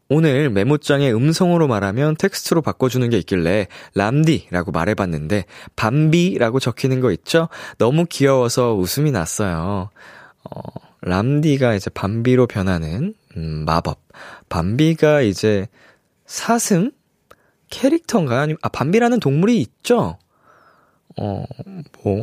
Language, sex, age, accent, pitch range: Korean, male, 20-39, native, 100-165 Hz